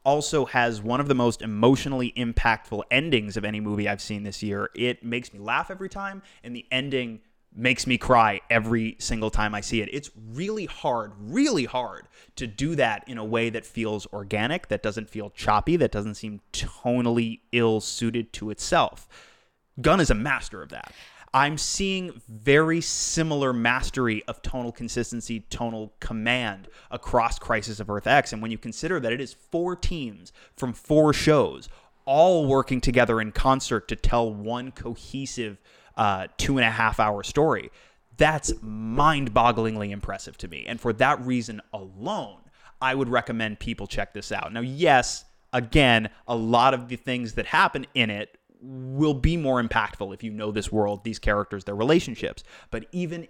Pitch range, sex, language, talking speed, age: 110-130 Hz, male, English, 165 wpm, 20-39